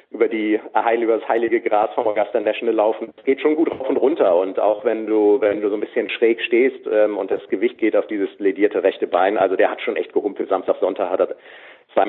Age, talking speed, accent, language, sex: 50-69, 245 wpm, German, German, male